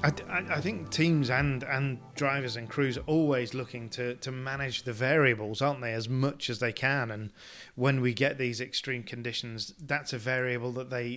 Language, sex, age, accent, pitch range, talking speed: English, male, 30-49, British, 120-140 Hz, 190 wpm